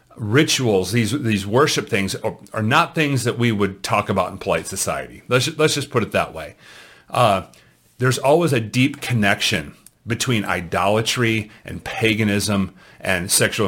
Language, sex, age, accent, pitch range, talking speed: English, male, 40-59, American, 100-120 Hz, 160 wpm